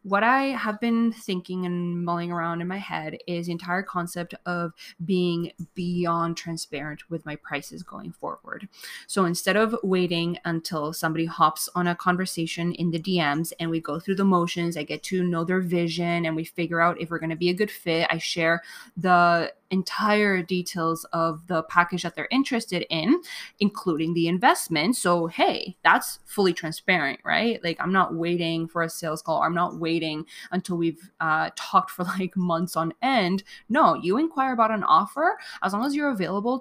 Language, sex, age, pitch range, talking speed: English, female, 20-39, 170-205 Hz, 185 wpm